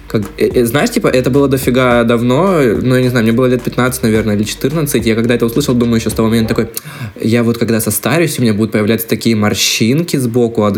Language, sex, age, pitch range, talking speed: Russian, male, 20-39, 110-125 Hz, 235 wpm